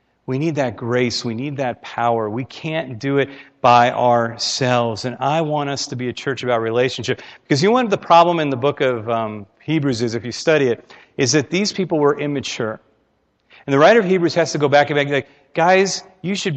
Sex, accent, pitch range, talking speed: male, American, 120-155 Hz, 225 wpm